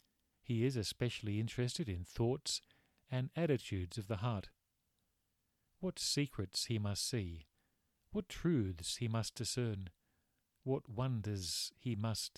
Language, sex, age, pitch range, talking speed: English, male, 50-69, 100-130 Hz, 120 wpm